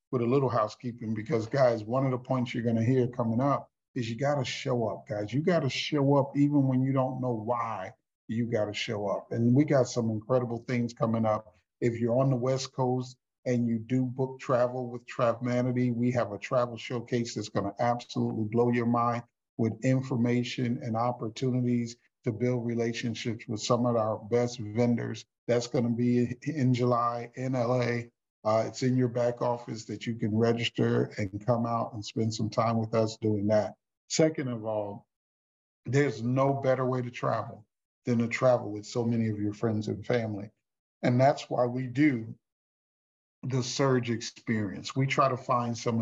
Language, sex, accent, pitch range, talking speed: English, male, American, 110-125 Hz, 190 wpm